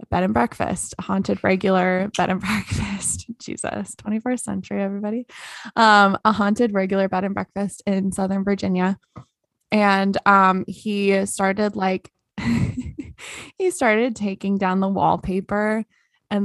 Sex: female